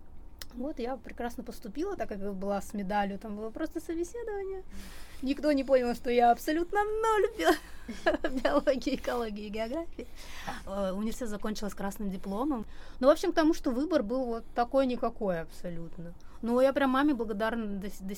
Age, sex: 20-39, female